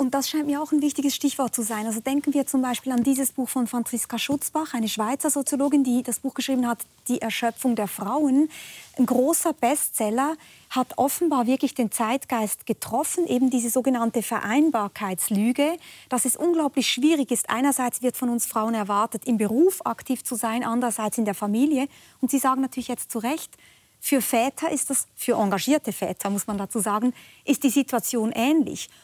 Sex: female